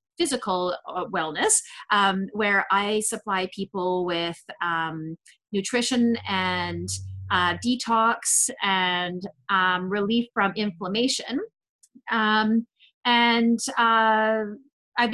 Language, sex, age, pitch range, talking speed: English, female, 30-49, 190-225 Hz, 85 wpm